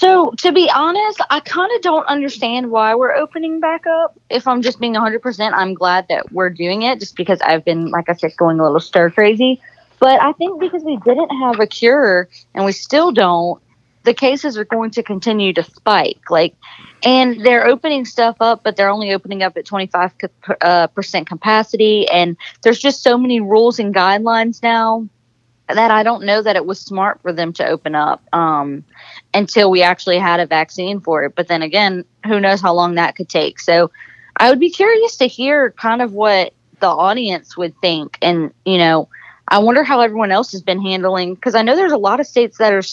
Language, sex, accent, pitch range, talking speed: English, female, American, 175-245 Hz, 205 wpm